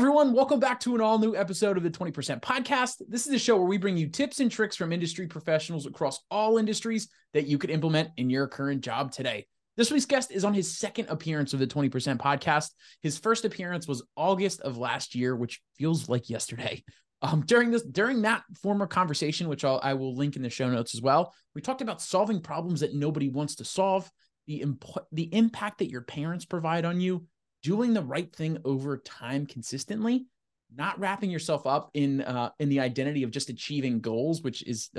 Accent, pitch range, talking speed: American, 135-195 Hz, 205 wpm